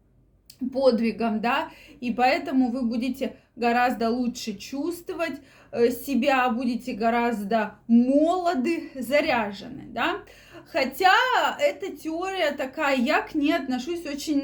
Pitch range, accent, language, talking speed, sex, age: 235-300 Hz, native, Russian, 100 wpm, female, 20-39